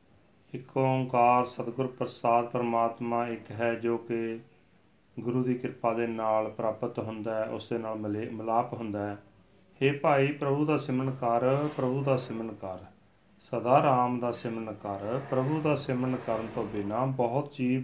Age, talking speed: 40-59, 145 wpm